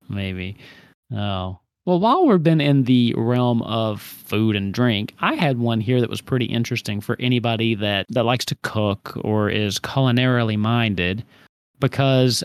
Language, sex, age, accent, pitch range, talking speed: English, male, 30-49, American, 105-140 Hz, 160 wpm